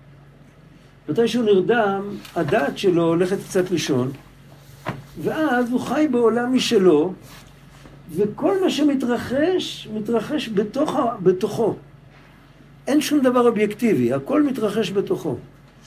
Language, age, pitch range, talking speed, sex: Hebrew, 60-79, 140-225 Hz, 100 wpm, male